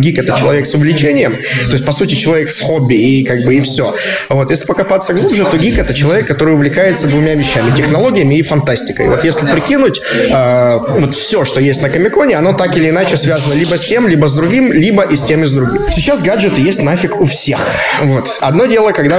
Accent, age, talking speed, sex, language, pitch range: native, 20-39, 215 wpm, male, Ukrainian, 140-185 Hz